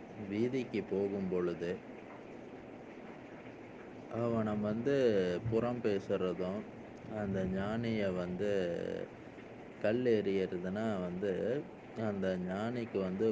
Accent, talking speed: native, 70 wpm